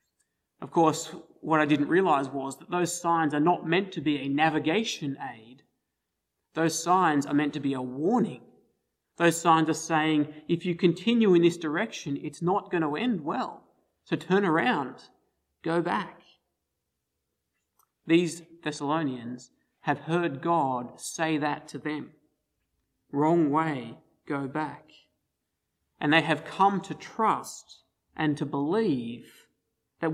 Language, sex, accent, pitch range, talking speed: English, male, Australian, 145-175 Hz, 140 wpm